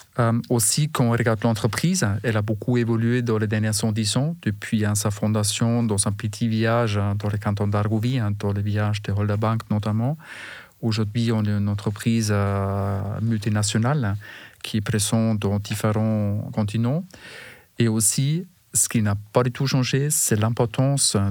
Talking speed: 165 wpm